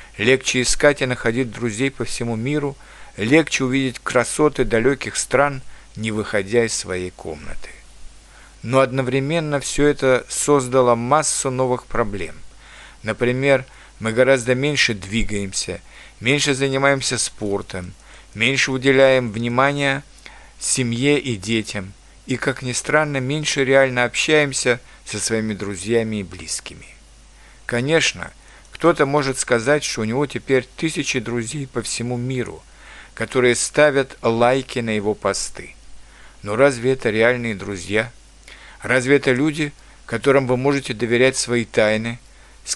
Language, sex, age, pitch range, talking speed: Russian, male, 50-69, 115-140 Hz, 120 wpm